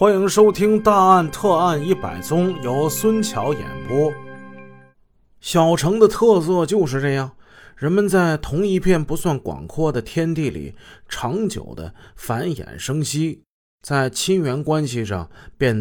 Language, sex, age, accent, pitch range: Chinese, male, 30-49, native, 110-160 Hz